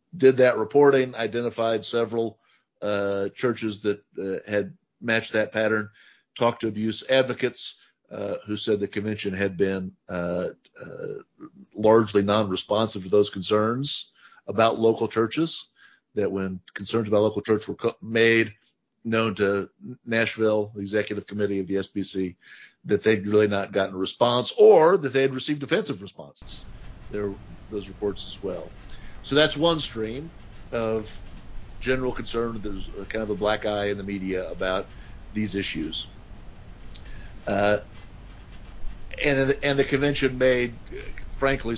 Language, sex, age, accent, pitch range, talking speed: English, male, 50-69, American, 100-120 Hz, 140 wpm